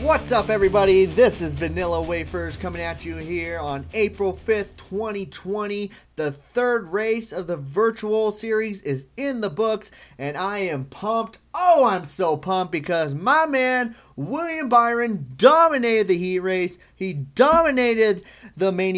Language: English